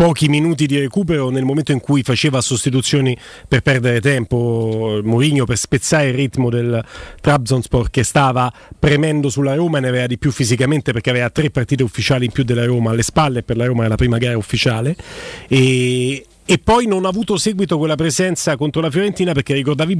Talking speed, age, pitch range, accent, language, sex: 190 wpm, 40-59, 125-155 Hz, native, Italian, male